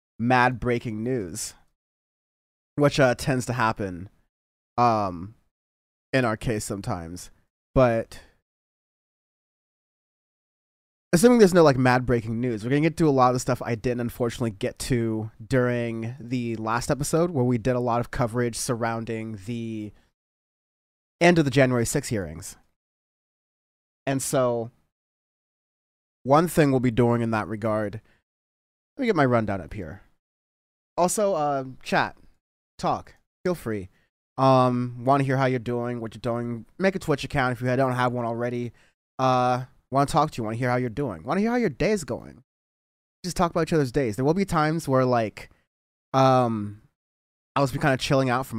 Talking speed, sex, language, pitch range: 170 wpm, male, English, 110-135 Hz